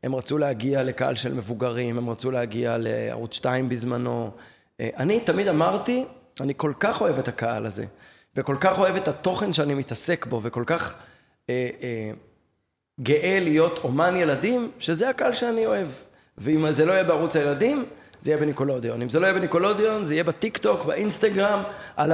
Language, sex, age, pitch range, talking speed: Hebrew, male, 20-39, 120-165 Hz, 165 wpm